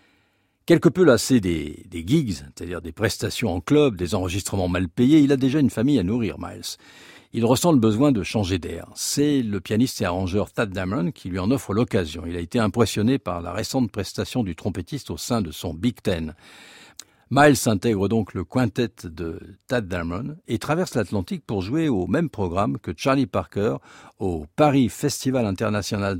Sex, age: male, 50-69